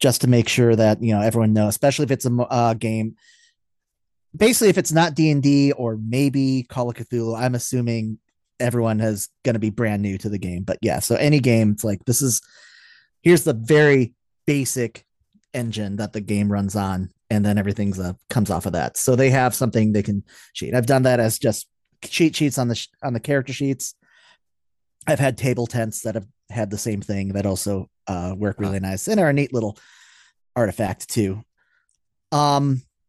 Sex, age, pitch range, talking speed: male, 30-49, 110-140 Hz, 200 wpm